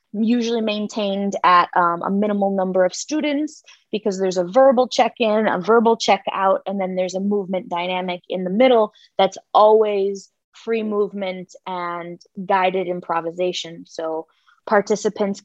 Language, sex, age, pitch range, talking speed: English, female, 20-39, 180-210 Hz, 135 wpm